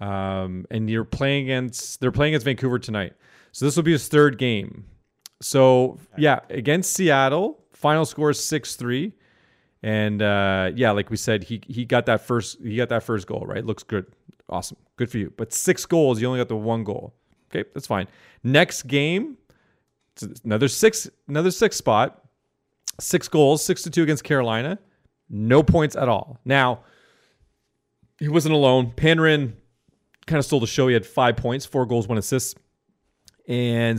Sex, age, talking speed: male, 30-49, 175 wpm